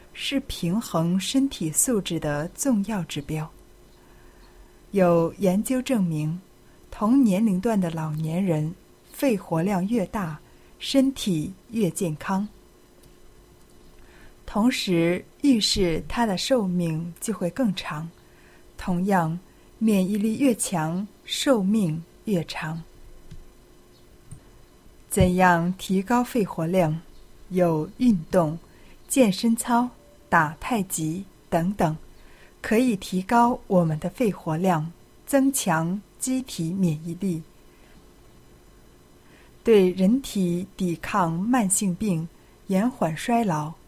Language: Chinese